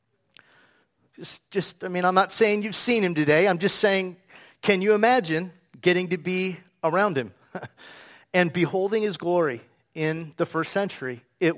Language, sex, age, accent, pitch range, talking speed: English, male, 40-59, American, 165-195 Hz, 155 wpm